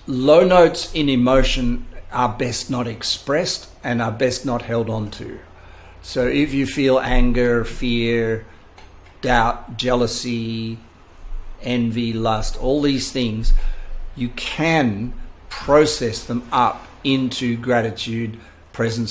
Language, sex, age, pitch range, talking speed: English, male, 50-69, 110-130 Hz, 115 wpm